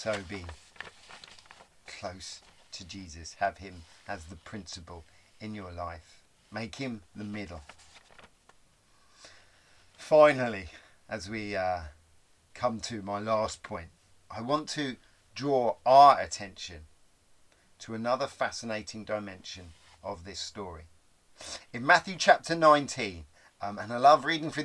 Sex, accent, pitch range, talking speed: male, British, 95-150 Hz, 120 wpm